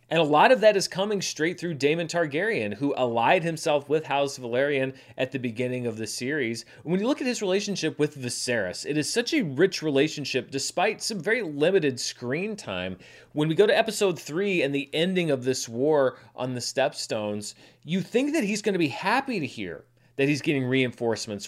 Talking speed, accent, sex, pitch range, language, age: 200 wpm, American, male, 125-170 Hz, English, 30-49